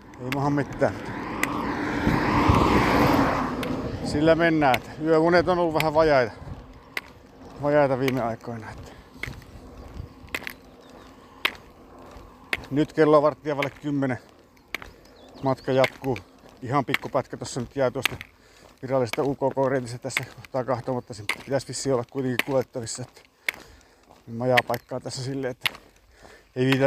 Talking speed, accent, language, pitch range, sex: 90 wpm, native, Finnish, 100-135 Hz, male